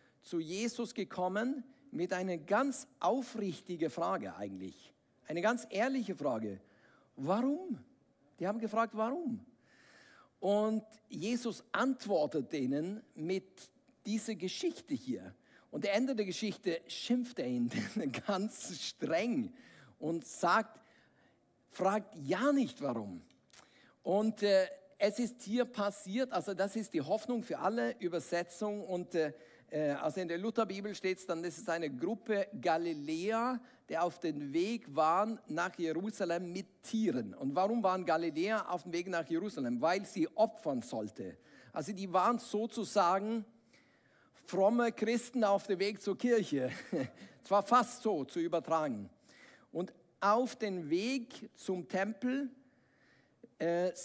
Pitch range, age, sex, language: 180-240 Hz, 50-69, male, German